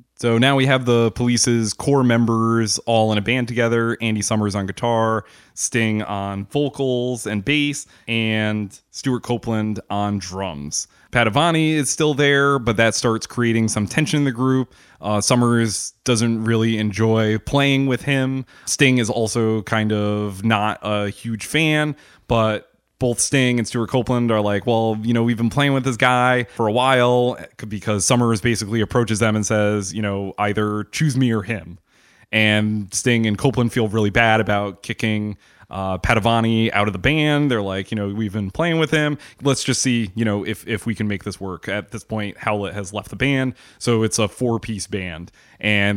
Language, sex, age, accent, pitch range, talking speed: English, male, 20-39, American, 105-125 Hz, 185 wpm